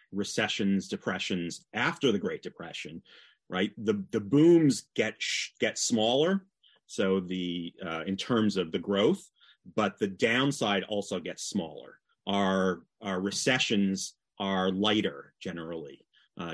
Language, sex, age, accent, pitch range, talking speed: English, male, 30-49, American, 95-135 Hz, 125 wpm